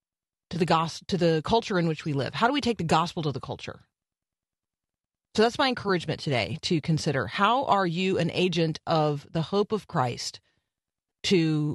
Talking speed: 190 wpm